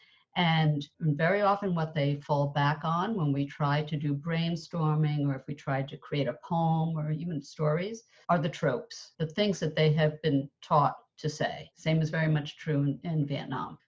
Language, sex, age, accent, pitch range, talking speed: English, female, 60-79, American, 150-190 Hz, 195 wpm